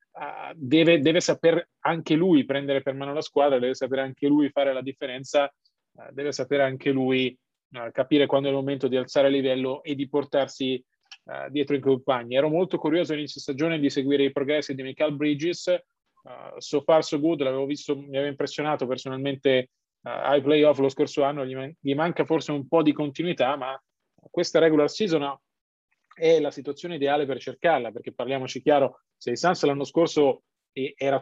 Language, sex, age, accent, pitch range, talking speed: Italian, male, 30-49, native, 135-155 Hz, 175 wpm